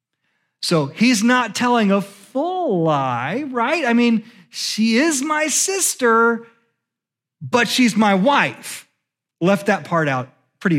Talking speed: 130 wpm